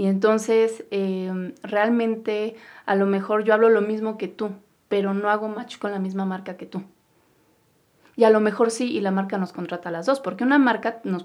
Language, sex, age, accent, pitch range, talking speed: Spanish, female, 30-49, Mexican, 190-230 Hz, 215 wpm